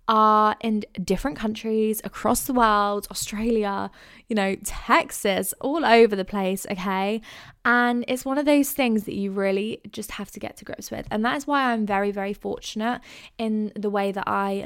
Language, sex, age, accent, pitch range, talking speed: English, female, 20-39, British, 200-240 Hz, 180 wpm